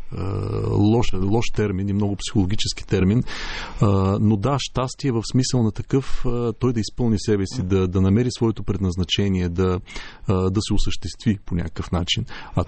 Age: 40-59